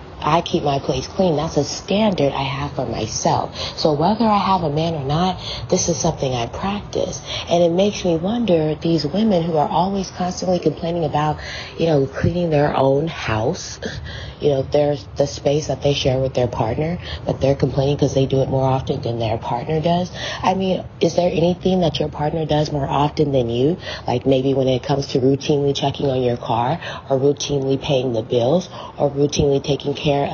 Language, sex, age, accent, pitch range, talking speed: English, female, 30-49, American, 135-170 Hz, 200 wpm